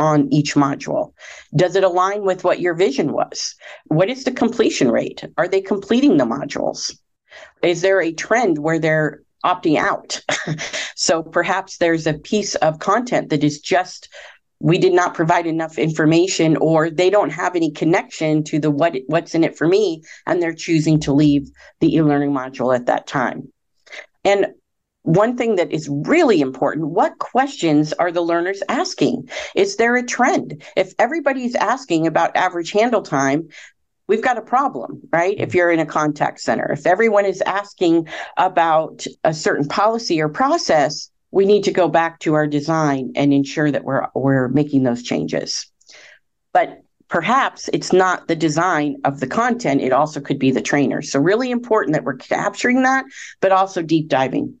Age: 50-69